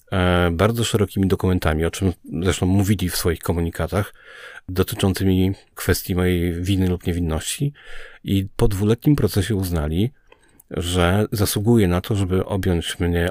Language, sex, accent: Polish, male, native